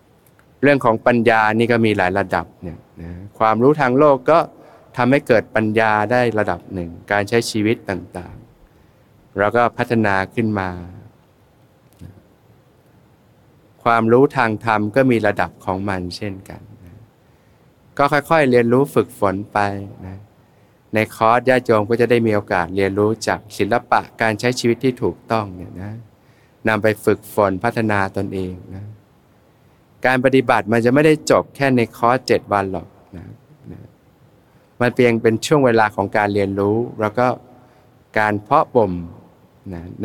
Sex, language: male, Thai